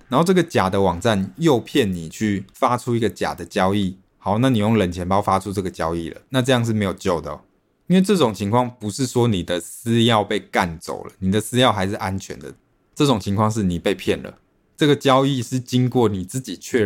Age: 20-39